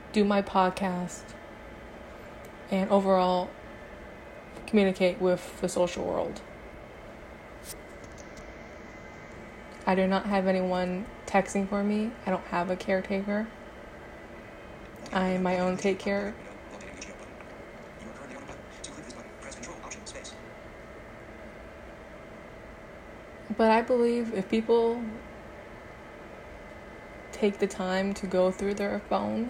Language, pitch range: English, 185-205 Hz